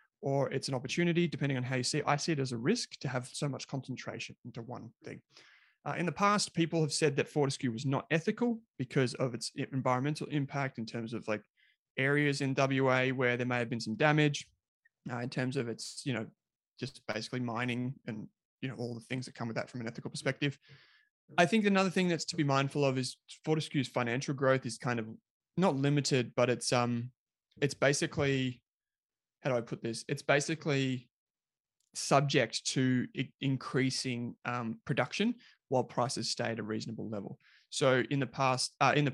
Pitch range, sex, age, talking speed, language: 120-145 Hz, male, 20-39, 200 wpm, English